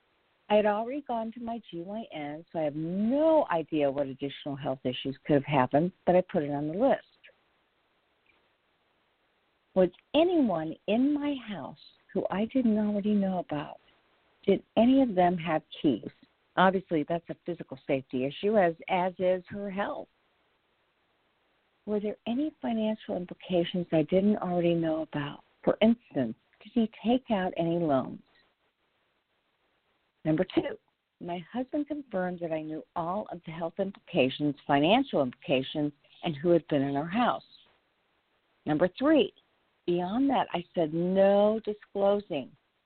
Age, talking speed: 50-69, 145 wpm